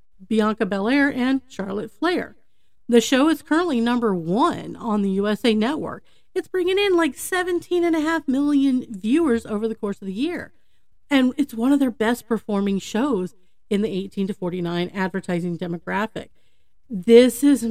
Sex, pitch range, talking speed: female, 190-260 Hz, 165 wpm